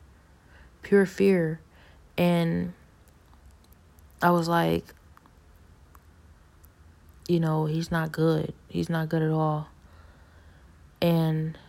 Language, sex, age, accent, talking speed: English, female, 20-39, American, 85 wpm